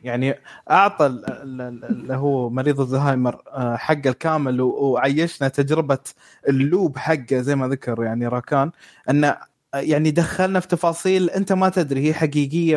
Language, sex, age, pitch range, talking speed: Arabic, male, 20-39, 135-175 Hz, 120 wpm